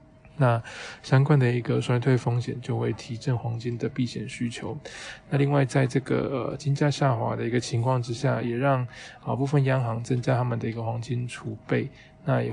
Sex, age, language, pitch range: male, 20-39, Chinese, 120-135 Hz